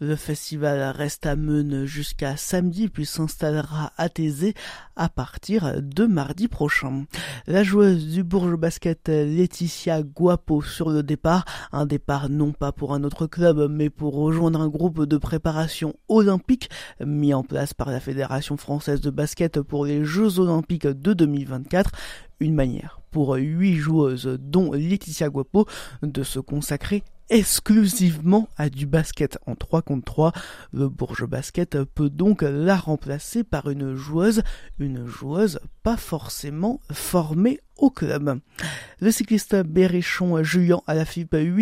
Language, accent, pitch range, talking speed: French, French, 145-180 Hz, 145 wpm